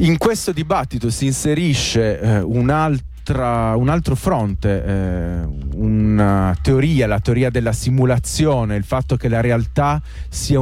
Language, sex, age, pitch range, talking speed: Italian, male, 30-49, 100-125 Hz, 130 wpm